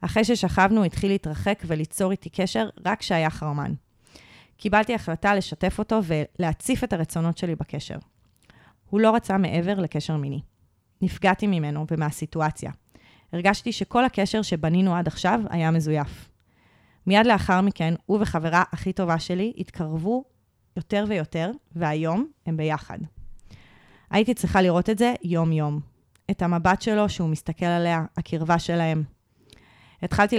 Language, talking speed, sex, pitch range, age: Hebrew, 130 wpm, female, 160-200 Hz, 30-49